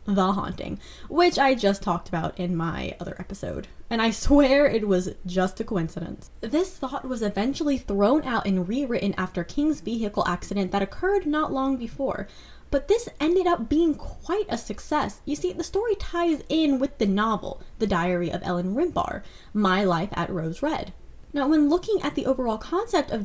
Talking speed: 185 wpm